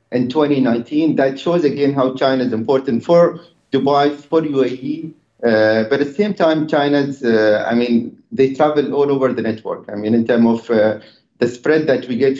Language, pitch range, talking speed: English, 115-145 Hz, 195 wpm